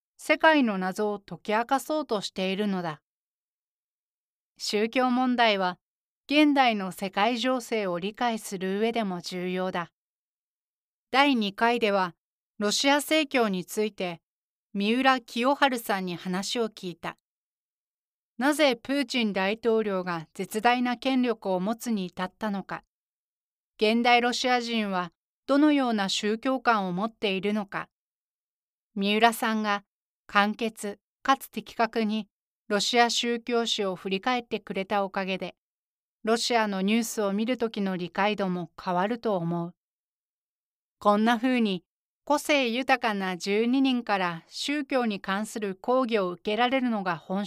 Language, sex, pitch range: Japanese, female, 195-245 Hz